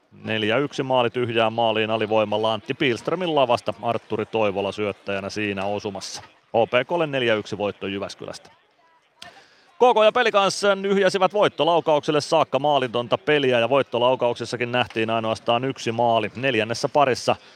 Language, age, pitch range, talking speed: Finnish, 30-49, 105-145 Hz, 115 wpm